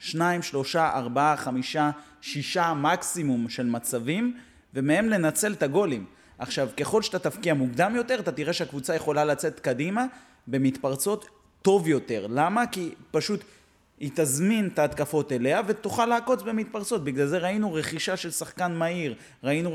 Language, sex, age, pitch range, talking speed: Hebrew, male, 30-49, 135-195 Hz, 135 wpm